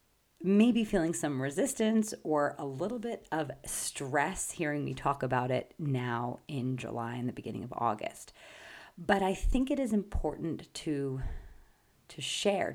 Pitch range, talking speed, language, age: 140-185 Hz, 150 wpm, English, 30-49